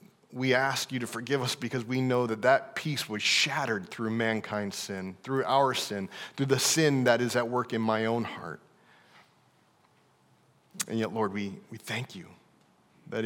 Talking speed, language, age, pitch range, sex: 175 wpm, English, 40-59, 105-125 Hz, male